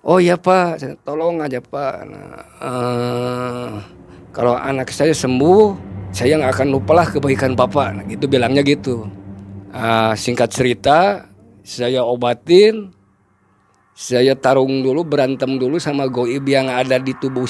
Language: Indonesian